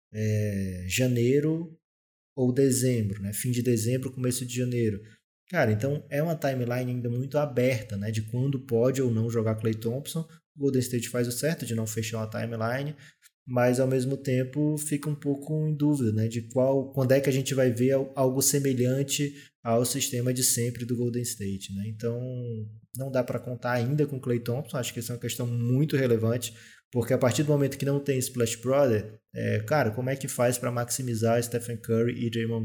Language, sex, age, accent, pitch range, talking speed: Portuguese, male, 20-39, Brazilian, 115-135 Hz, 200 wpm